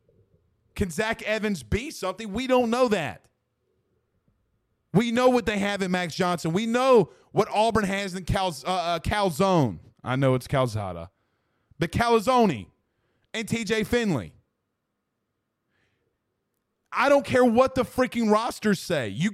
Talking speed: 135 wpm